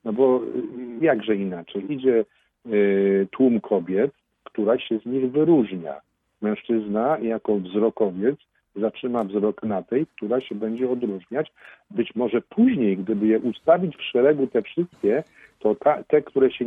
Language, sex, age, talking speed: Polish, male, 50-69, 135 wpm